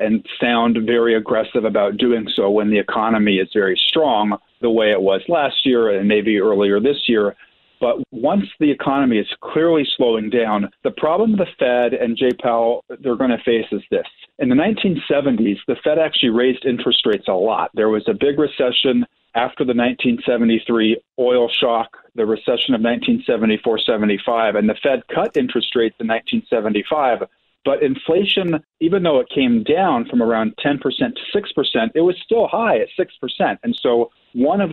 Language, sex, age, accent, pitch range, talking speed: English, male, 40-59, American, 115-155 Hz, 180 wpm